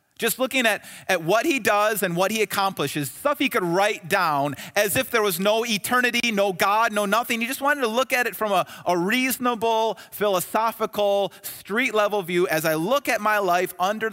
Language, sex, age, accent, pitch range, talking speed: English, male, 30-49, American, 140-205 Hz, 200 wpm